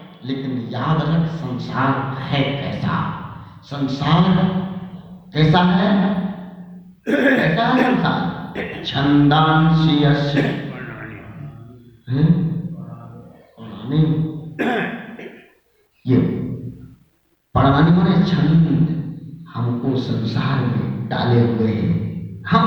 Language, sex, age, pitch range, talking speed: Hindi, male, 50-69, 140-195 Hz, 55 wpm